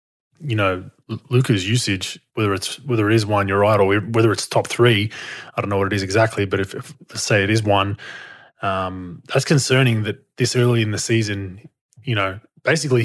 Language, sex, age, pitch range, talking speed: English, male, 20-39, 105-125 Hz, 200 wpm